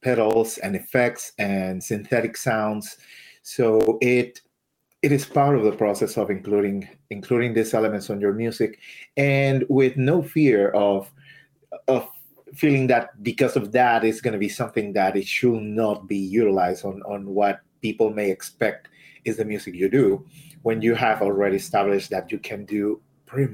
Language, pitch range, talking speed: English, 105-135 Hz, 165 wpm